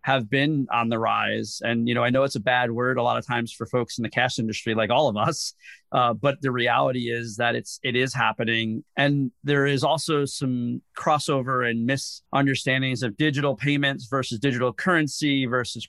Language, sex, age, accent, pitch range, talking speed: English, male, 30-49, American, 120-145 Hz, 200 wpm